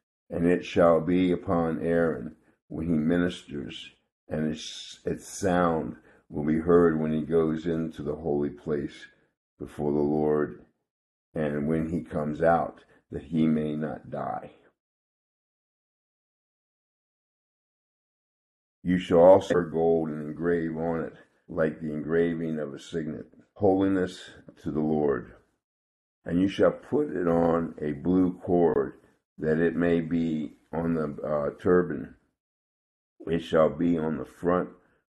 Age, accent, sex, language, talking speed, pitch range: 50-69, American, male, English, 130 wpm, 75-85 Hz